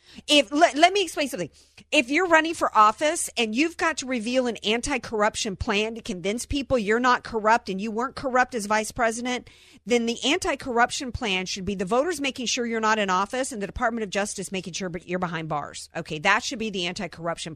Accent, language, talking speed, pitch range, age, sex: American, English, 225 wpm, 170-230 Hz, 50-69, female